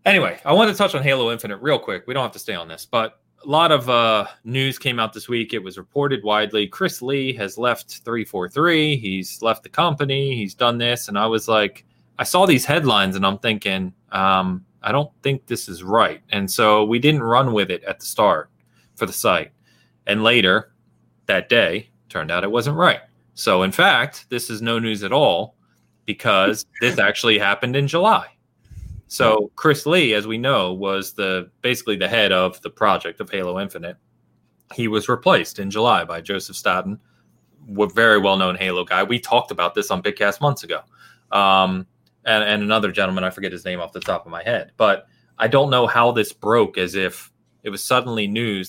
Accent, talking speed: American, 200 wpm